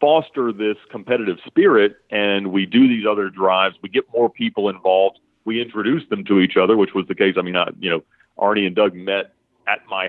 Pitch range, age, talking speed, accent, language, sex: 100-130 Hz, 40-59, 215 wpm, American, English, male